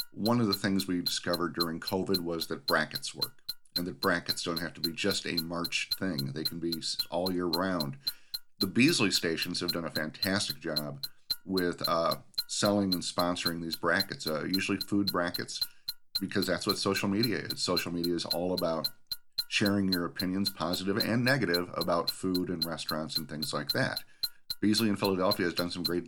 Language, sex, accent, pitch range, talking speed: English, male, American, 85-95 Hz, 185 wpm